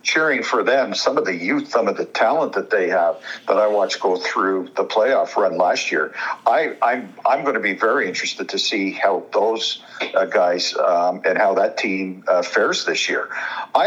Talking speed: 210 wpm